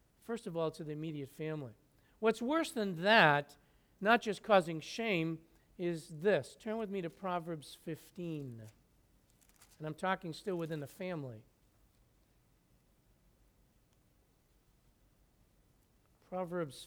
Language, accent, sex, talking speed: English, American, male, 110 wpm